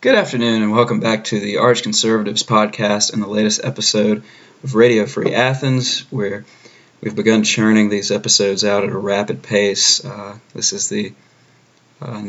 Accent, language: American, English